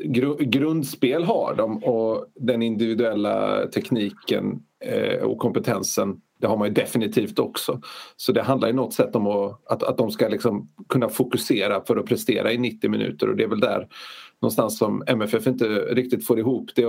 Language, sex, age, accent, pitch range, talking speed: Swedish, male, 40-59, native, 115-140 Hz, 170 wpm